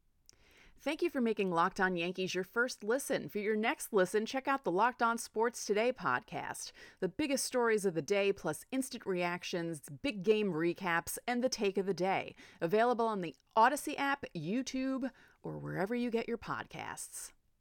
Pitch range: 180-245 Hz